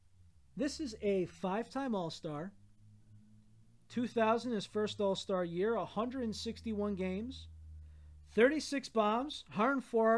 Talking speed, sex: 90 wpm, male